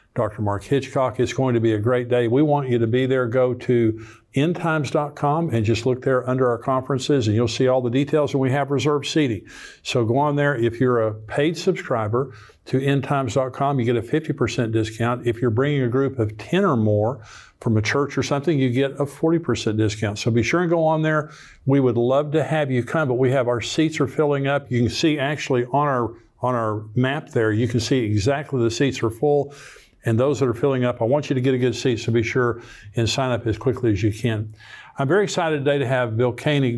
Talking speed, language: 235 wpm, English